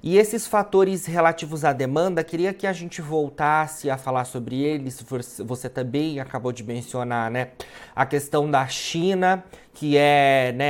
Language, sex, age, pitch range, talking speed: Portuguese, male, 30-49, 135-170 Hz, 155 wpm